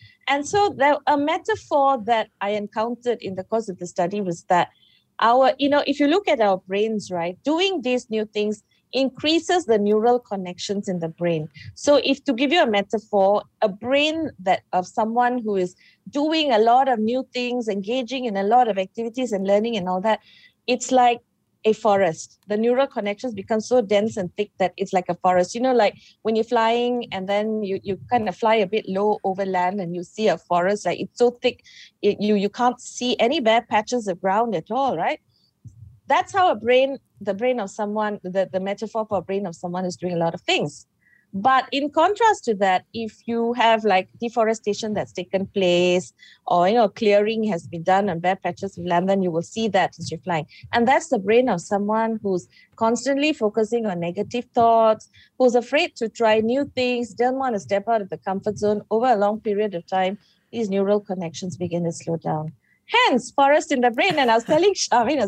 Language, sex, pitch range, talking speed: English, female, 195-250 Hz, 210 wpm